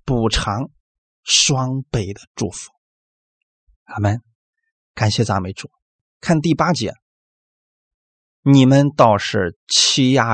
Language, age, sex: Chinese, 20-39, male